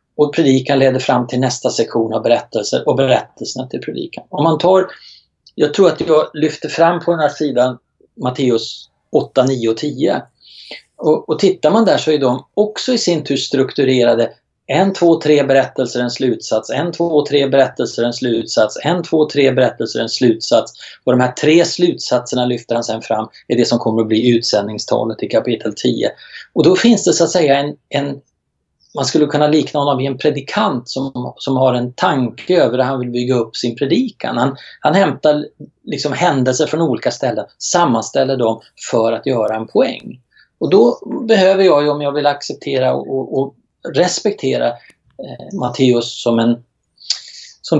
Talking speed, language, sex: 180 wpm, Swedish, male